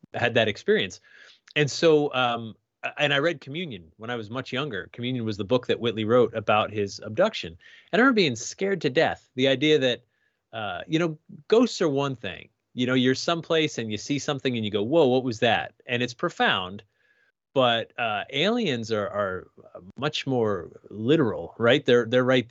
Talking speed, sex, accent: 190 wpm, male, American